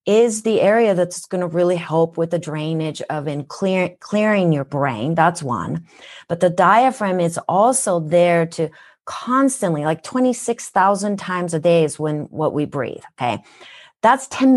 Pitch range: 160-200 Hz